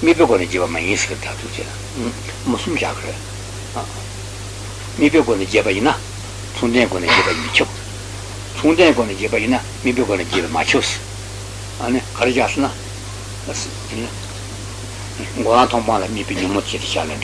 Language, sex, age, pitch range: Italian, male, 60-79, 100-110 Hz